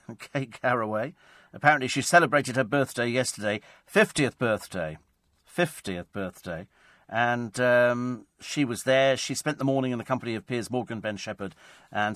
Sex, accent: male, British